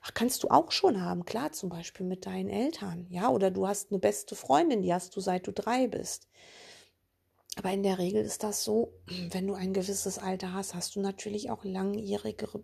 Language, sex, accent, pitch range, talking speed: German, female, German, 185-240 Hz, 205 wpm